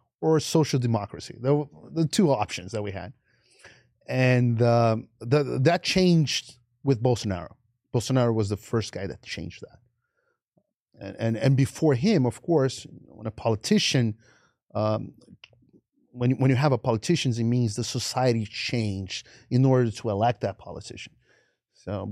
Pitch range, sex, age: 105-125 Hz, male, 30-49